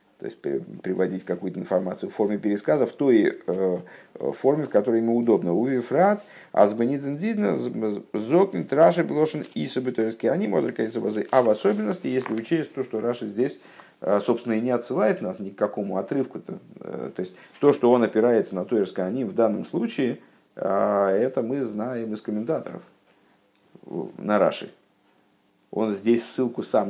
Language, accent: Russian, native